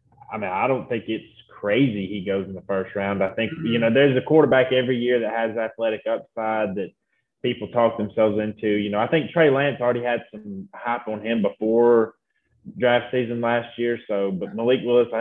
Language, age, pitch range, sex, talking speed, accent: English, 20-39, 100-120 Hz, male, 210 wpm, American